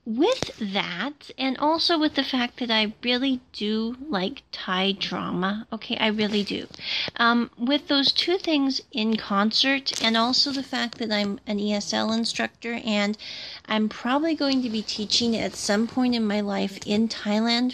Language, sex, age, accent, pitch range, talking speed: English, female, 30-49, American, 210-270 Hz, 165 wpm